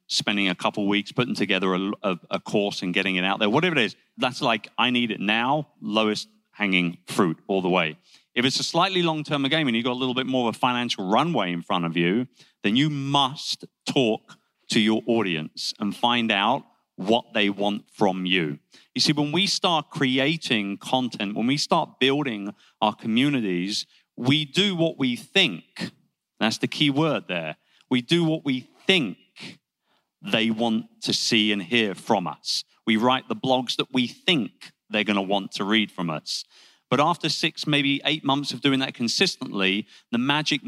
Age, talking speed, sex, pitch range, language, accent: 30-49, 190 wpm, male, 105-150 Hz, English, British